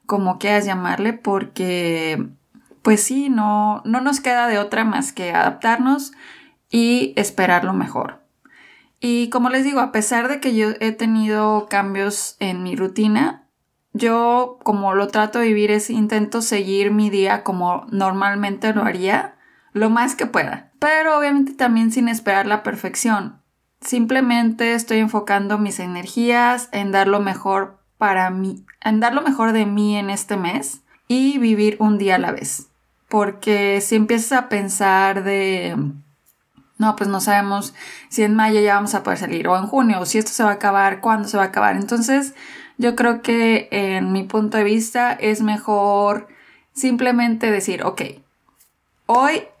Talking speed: 160 wpm